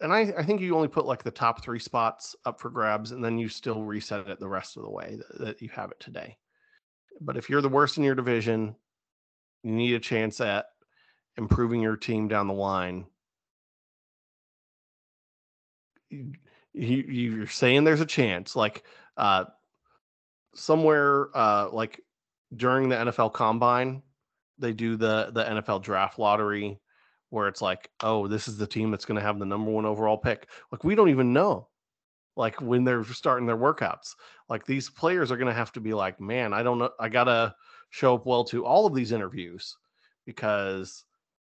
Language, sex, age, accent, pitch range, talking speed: English, male, 30-49, American, 110-135 Hz, 185 wpm